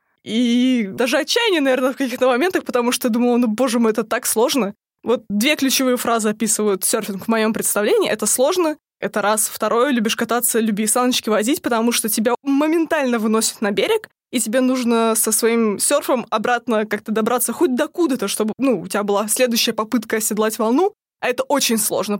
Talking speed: 180 wpm